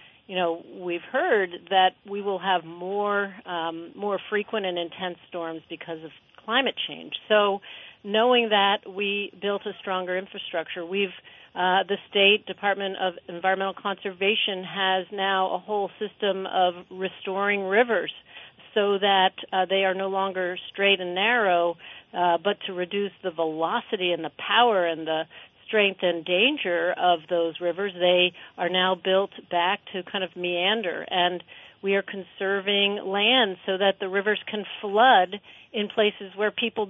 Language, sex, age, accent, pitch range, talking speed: English, female, 40-59, American, 180-210 Hz, 155 wpm